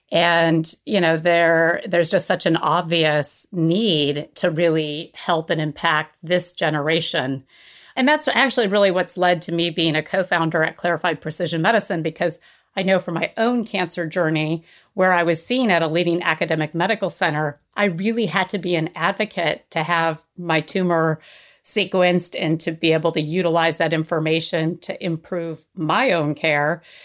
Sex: female